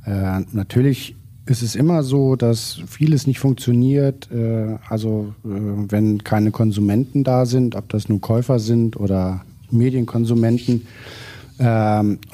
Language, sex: German, male